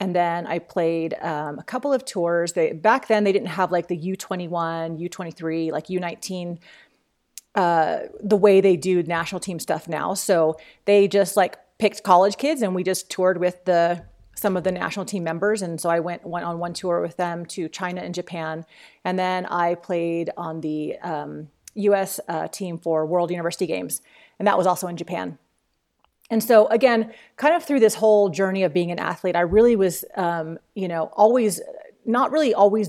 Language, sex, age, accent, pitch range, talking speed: English, female, 30-49, American, 170-205 Hz, 195 wpm